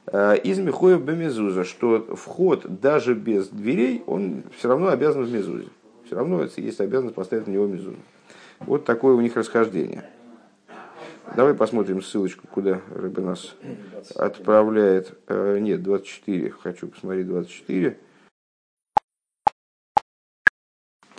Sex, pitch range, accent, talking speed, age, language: male, 100-135 Hz, native, 110 wpm, 50-69, Russian